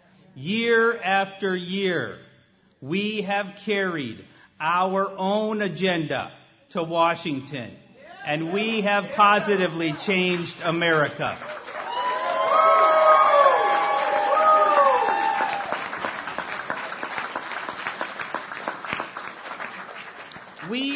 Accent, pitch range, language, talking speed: American, 165-210 Hz, English, 50 wpm